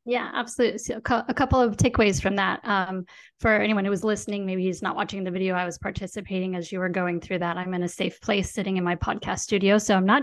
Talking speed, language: 250 wpm, English